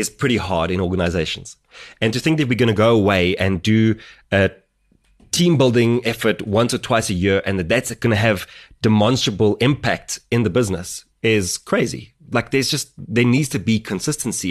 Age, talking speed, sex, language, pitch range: 20-39, 190 wpm, male, English, 100-125 Hz